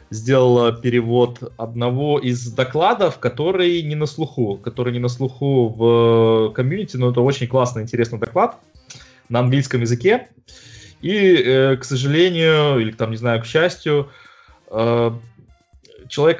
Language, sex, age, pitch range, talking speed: Russian, male, 20-39, 115-140 Hz, 125 wpm